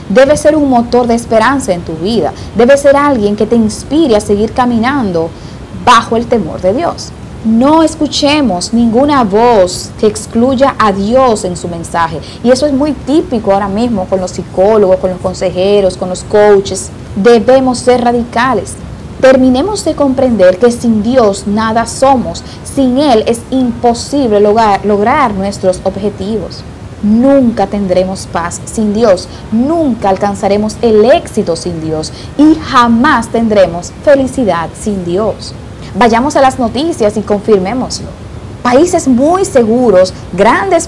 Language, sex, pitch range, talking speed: Spanish, female, 195-270 Hz, 140 wpm